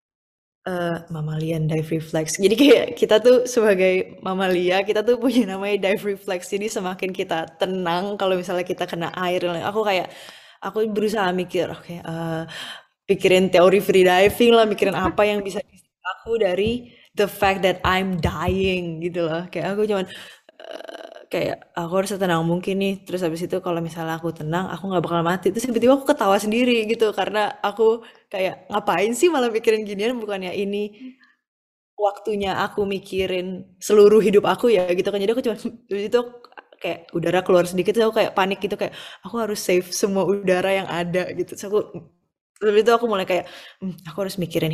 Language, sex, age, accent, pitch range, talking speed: Indonesian, female, 10-29, native, 180-210 Hz, 175 wpm